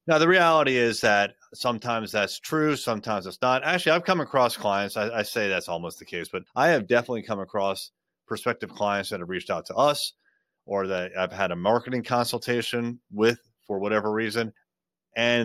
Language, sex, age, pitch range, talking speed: English, male, 30-49, 100-140 Hz, 190 wpm